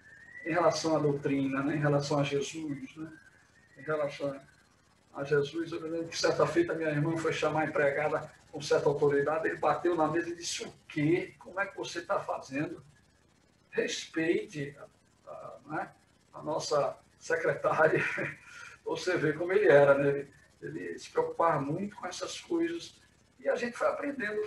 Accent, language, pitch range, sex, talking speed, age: Brazilian, Portuguese, 145-210 Hz, male, 165 wpm, 60-79